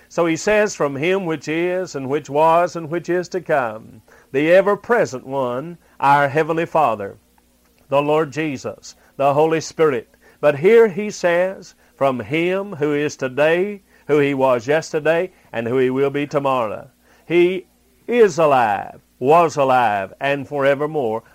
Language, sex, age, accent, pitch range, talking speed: English, male, 50-69, American, 130-170 Hz, 150 wpm